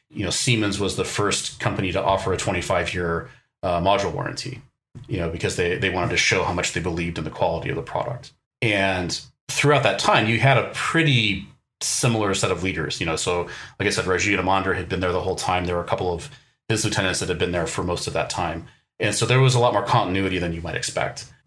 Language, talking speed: English, 245 wpm